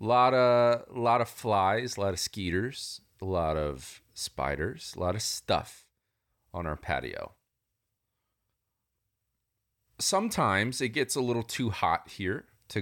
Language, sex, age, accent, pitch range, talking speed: English, male, 30-49, American, 95-120 Hz, 135 wpm